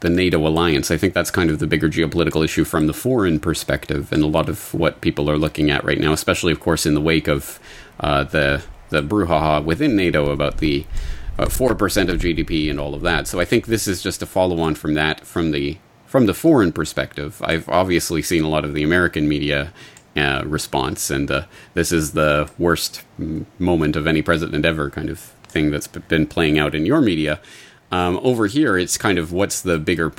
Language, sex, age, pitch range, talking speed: English, male, 30-49, 75-95 Hz, 215 wpm